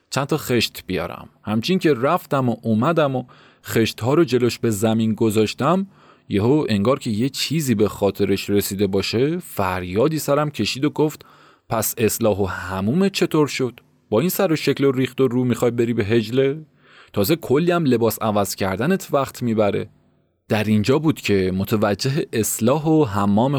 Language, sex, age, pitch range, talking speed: Persian, male, 30-49, 105-140 Hz, 160 wpm